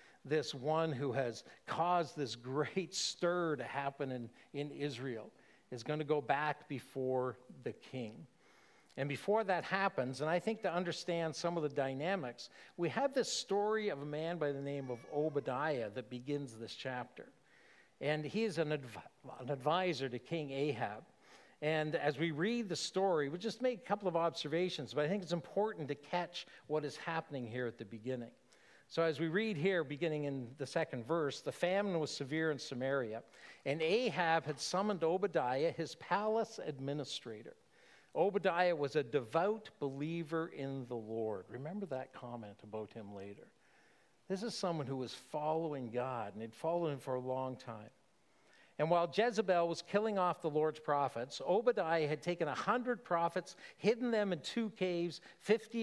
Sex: male